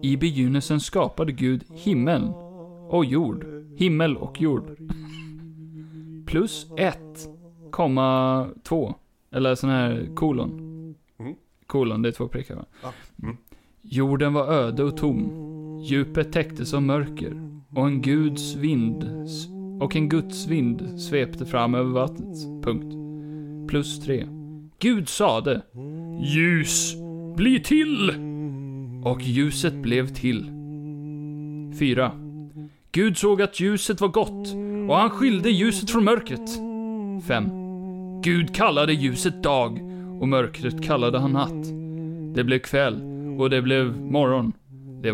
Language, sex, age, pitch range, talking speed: Swedish, male, 30-49, 140-170 Hz, 115 wpm